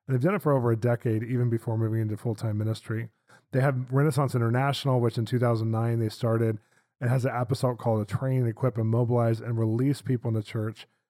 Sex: male